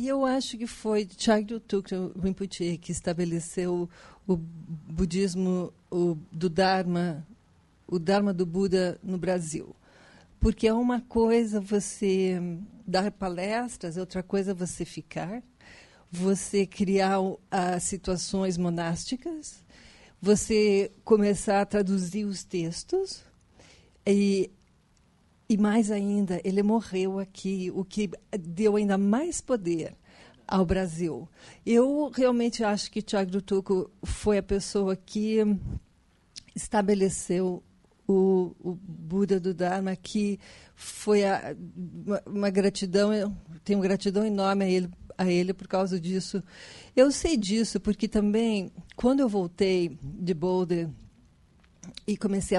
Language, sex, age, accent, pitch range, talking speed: Portuguese, female, 40-59, Brazilian, 180-210 Hz, 120 wpm